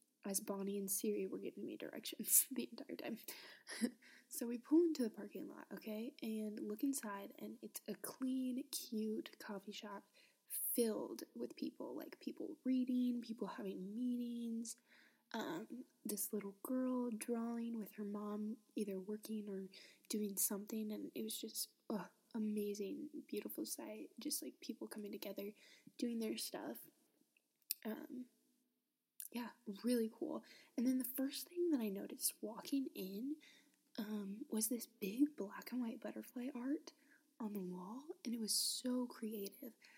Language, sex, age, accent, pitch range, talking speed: English, female, 20-39, American, 215-280 Hz, 150 wpm